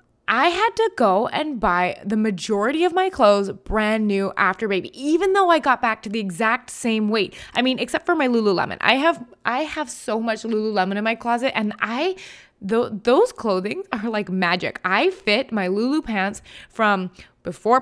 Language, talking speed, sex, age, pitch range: English, 190 wpm, female, 20-39, 200-255 Hz